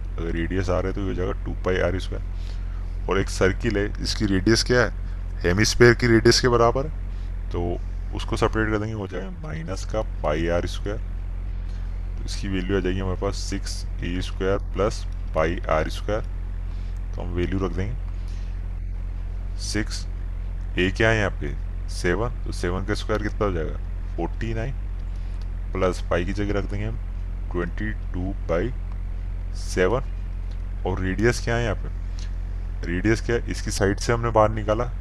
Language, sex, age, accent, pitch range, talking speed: Hindi, male, 20-39, native, 90-100 Hz, 160 wpm